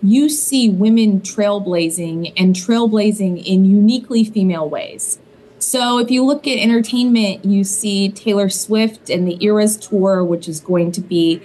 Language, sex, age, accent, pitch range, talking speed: English, female, 30-49, American, 195-225 Hz, 150 wpm